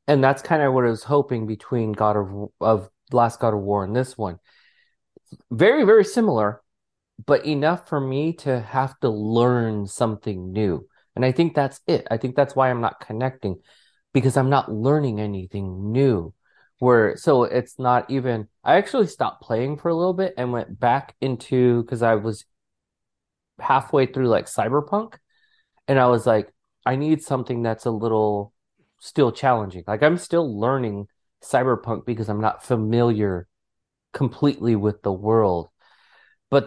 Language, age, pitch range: English, 30-49, 105-135 Hz